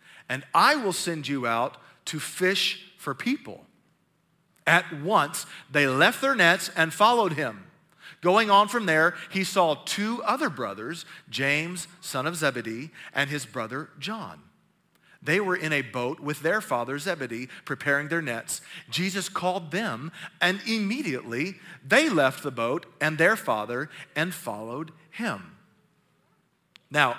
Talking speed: 140 wpm